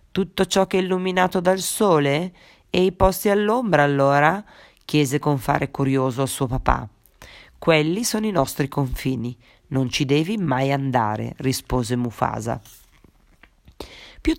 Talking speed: 135 wpm